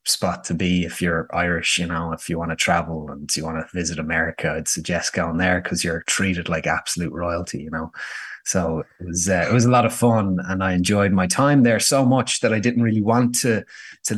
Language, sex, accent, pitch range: English, male, Irish, 90-105 Hz